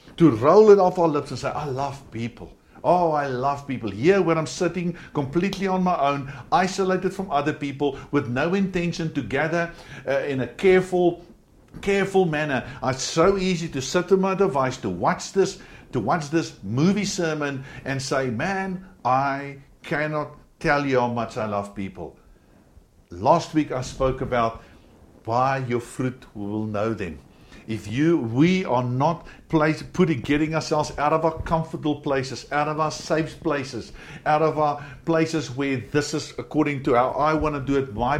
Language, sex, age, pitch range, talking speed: English, male, 60-79, 130-160 Hz, 180 wpm